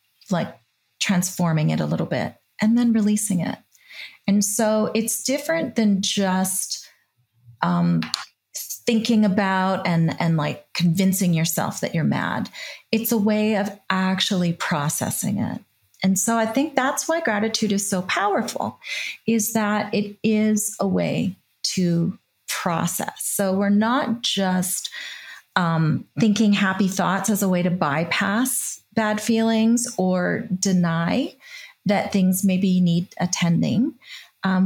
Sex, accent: female, American